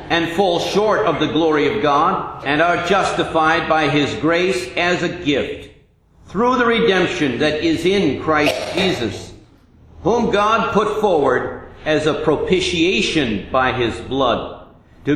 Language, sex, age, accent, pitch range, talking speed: English, male, 50-69, American, 140-200 Hz, 145 wpm